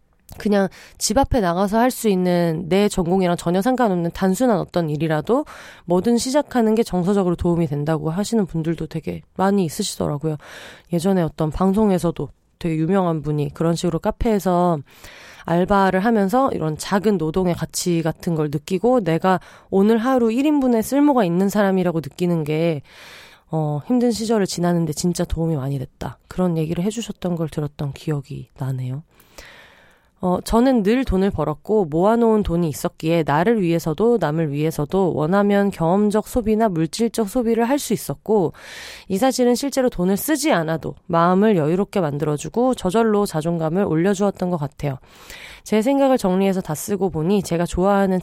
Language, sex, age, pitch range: Korean, female, 20-39, 165-215 Hz